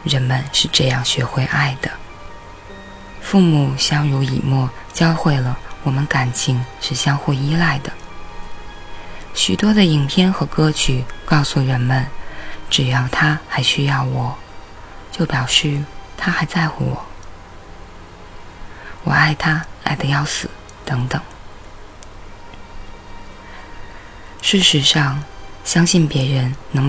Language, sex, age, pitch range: Chinese, female, 20-39, 100-150 Hz